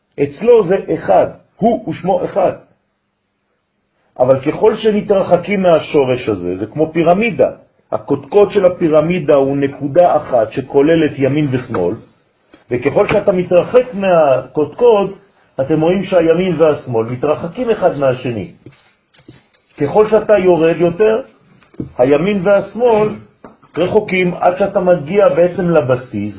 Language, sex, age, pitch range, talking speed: French, male, 40-59, 140-185 Hz, 110 wpm